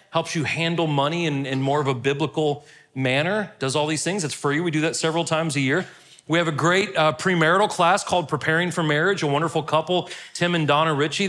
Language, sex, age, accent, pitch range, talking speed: English, male, 40-59, American, 150-190 Hz, 225 wpm